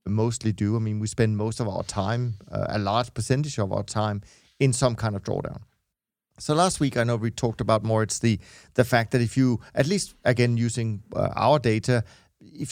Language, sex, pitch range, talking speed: English, male, 105-125 Hz, 215 wpm